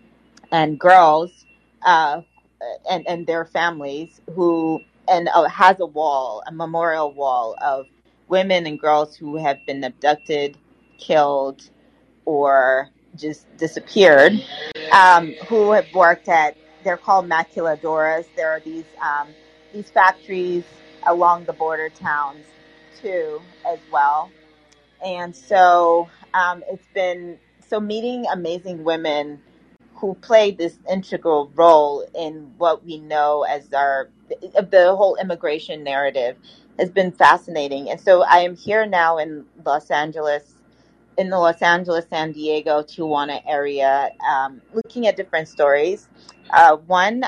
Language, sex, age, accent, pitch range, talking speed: English, female, 30-49, American, 150-185 Hz, 125 wpm